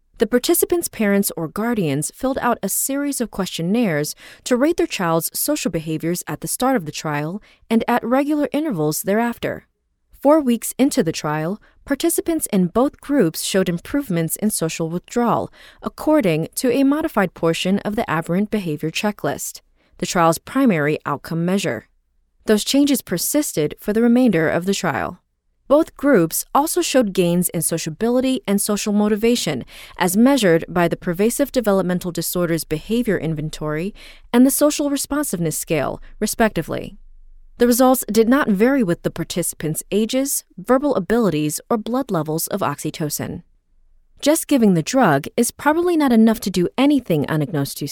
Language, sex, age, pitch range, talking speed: English, female, 20-39, 165-255 Hz, 150 wpm